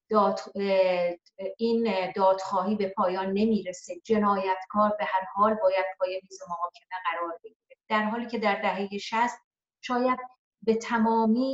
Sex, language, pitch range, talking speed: female, Persian, 190-230 Hz, 135 wpm